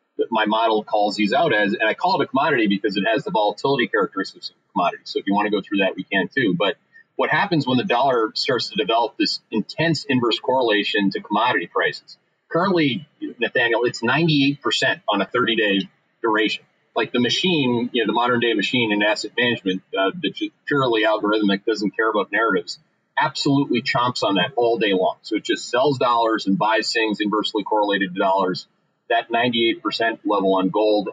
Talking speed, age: 195 wpm, 40-59